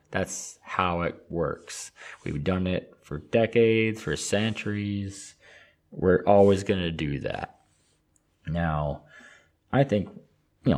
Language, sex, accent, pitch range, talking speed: English, male, American, 75-95 Hz, 115 wpm